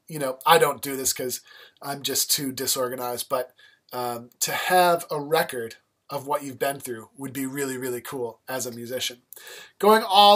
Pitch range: 140-180 Hz